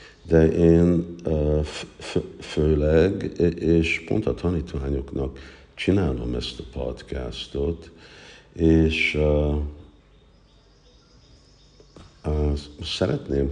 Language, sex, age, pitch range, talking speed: Hungarian, male, 50-69, 70-80 Hz, 60 wpm